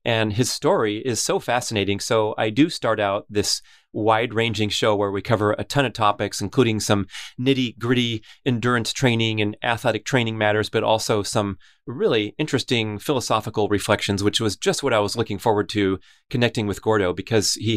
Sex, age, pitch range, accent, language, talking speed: male, 30-49, 105-120 Hz, American, English, 180 wpm